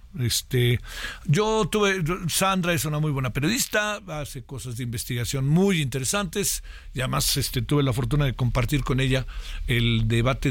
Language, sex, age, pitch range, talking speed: Spanish, male, 50-69, 125-180 Hz, 155 wpm